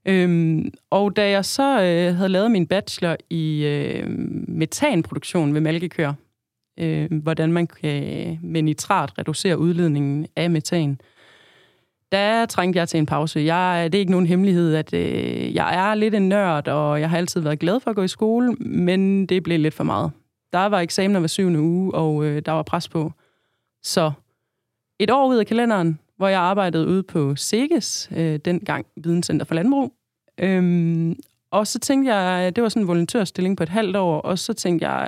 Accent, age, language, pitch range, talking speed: native, 30-49, Danish, 160-195 Hz, 185 wpm